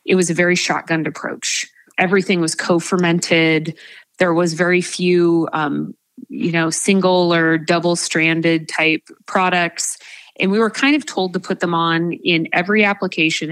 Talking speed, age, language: 150 wpm, 30-49, English